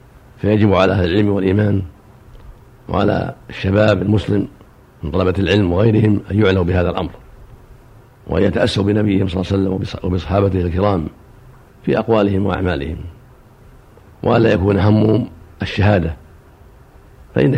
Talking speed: 115 wpm